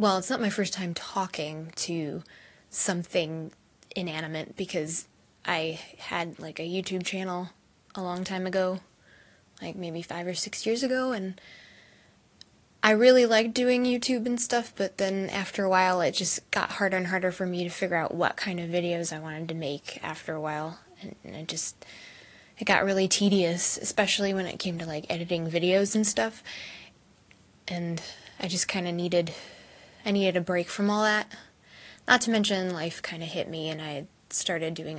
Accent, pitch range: American, 165-195 Hz